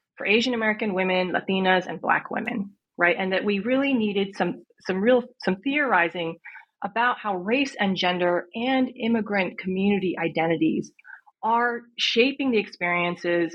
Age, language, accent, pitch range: 30-49, English, American, 180-235 Hz